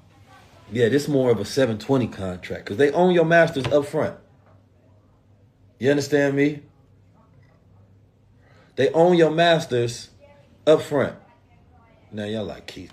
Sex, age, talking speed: male, 40-59, 130 wpm